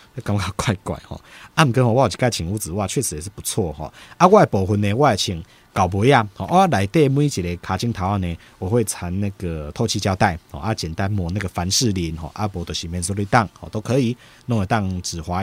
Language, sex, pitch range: Chinese, male, 90-120 Hz